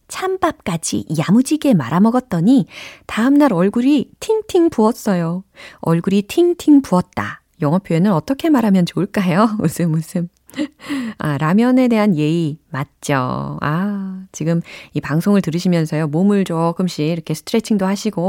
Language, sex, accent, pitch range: Korean, female, native, 160-235 Hz